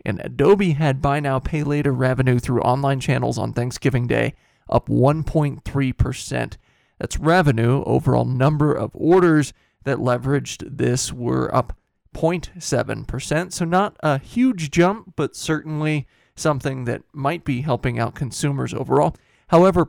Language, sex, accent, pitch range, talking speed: English, male, American, 125-155 Hz, 135 wpm